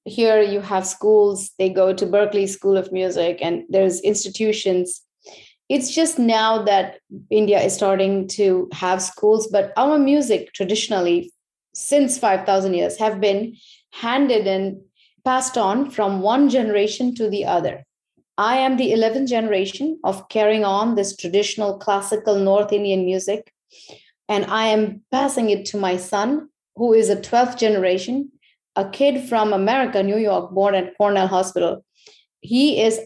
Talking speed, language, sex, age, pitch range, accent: 150 wpm, English, female, 30-49, 195-230 Hz, Indian